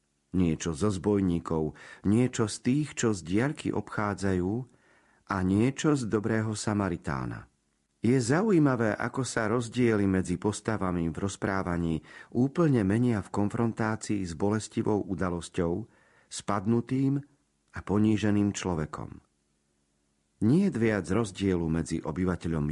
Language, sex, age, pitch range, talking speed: Slovak, male, 40-59, 85-115 Hz, 110 wpm